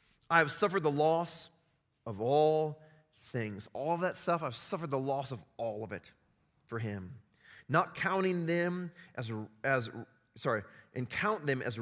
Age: 30-49